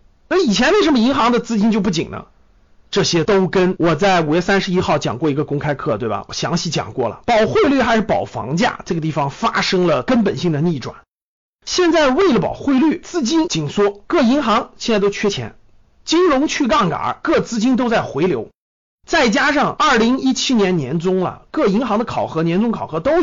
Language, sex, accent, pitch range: Chinese, male, native, 160-230 Hz